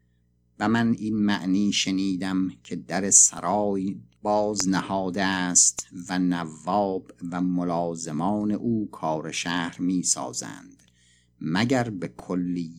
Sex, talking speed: male, 110 wpm